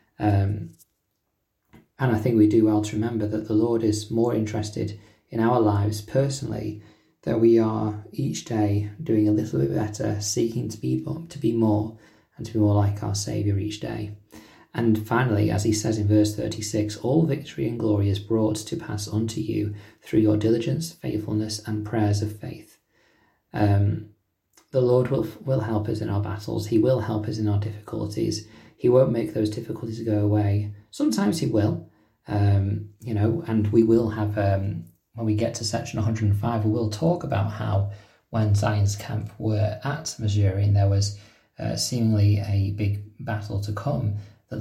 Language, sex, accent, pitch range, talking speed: English, male, British, 105-115 Hz, 180 wpm